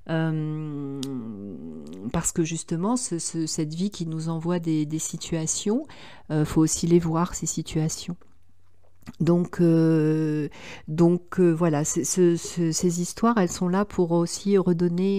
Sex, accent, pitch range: female, French, 160-195 Hz